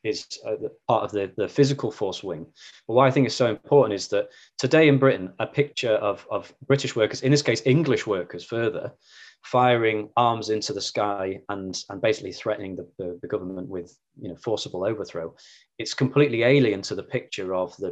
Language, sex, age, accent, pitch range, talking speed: English, male, 20-39, British, 105-140 Hz, 195 wpm